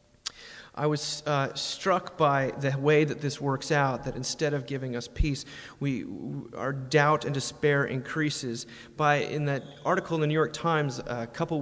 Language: English